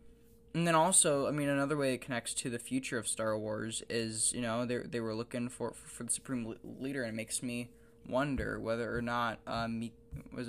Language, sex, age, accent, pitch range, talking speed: English, male, 10-29, American, 115-135 Hz, 225 wpm